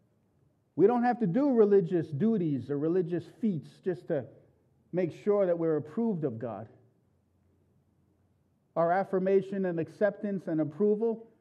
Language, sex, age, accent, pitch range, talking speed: English, male, 50-69, American, 140-185 Hz, 130 wpm